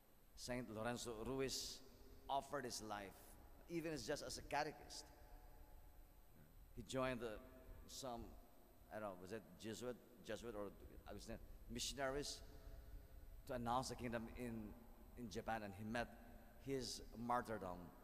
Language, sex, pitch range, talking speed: English, male, 95-130 Hz, 125 wpm